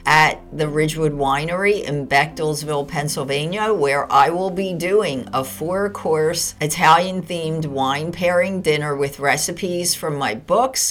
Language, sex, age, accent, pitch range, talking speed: English, female, 50-69, American, 150-180 Hz, 140 wpm